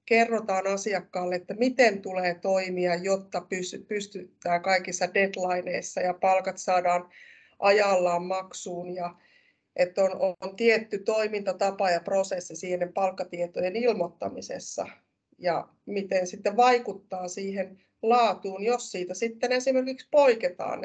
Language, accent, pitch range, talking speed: Finnish, native, 180-225 Hz, 105 wpm